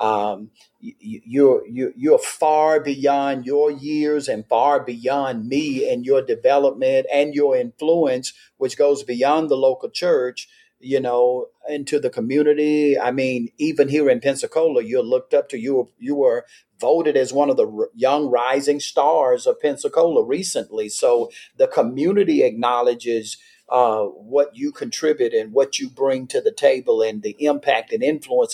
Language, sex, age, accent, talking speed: English, male, 50-69, American, 160 wpm